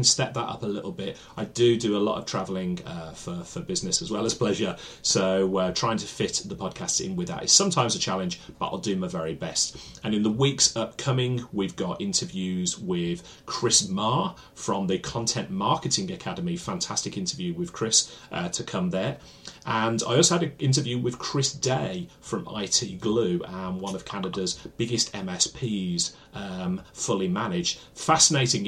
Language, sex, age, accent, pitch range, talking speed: English, male, 30-49, British, 105-175 Hz, 180 wpm